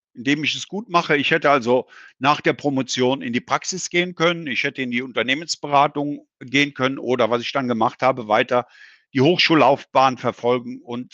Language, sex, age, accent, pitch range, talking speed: German, male, 50-69, German, 125-170 Hz, 185 wpm